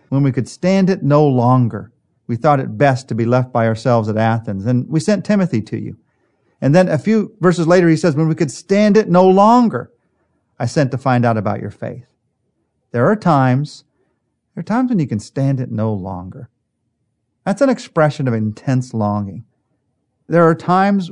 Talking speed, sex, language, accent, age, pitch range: 195 wpm, male, English, American, 40-59, 120-165 Hz